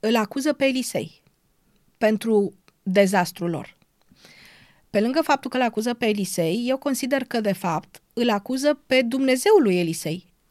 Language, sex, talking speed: Romanian, female, 150 wpm